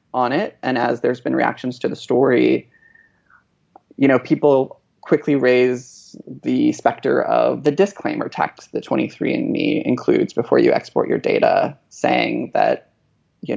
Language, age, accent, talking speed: English, 20-39, American, 140 wpm